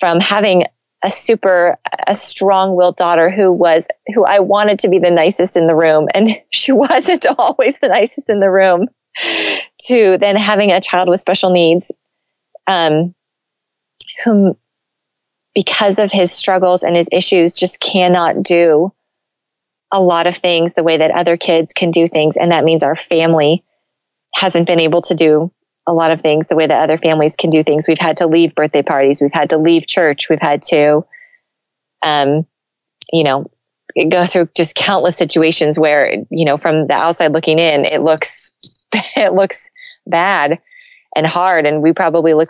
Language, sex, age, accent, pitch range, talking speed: English, female, 20-39, American, 160-185 Hz, 175 wpm